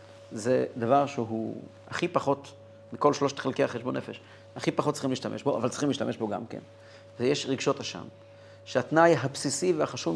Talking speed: 160 wpm